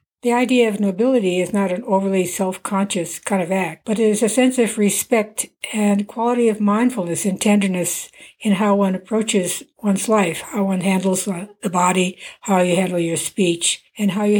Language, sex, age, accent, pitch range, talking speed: English, female, 60-79, American, 185-215 Hz, 185 wpm